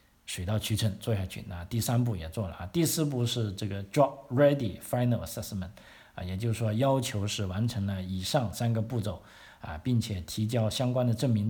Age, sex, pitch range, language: 50-69, male, 100-120 Hz, Chinese